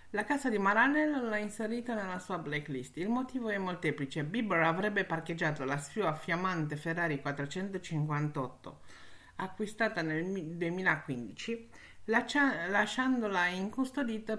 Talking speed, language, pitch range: 115 wpm, Italian, 145-215 Hz